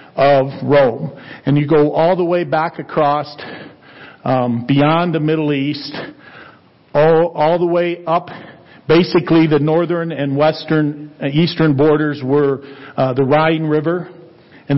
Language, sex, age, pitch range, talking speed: English, male, 50-69, 140-170 Hz, 140 wpm